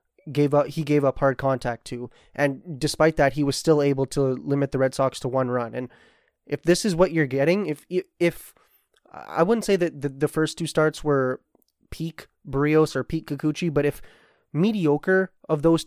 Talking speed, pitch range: 200 wpm, 135-160 Hz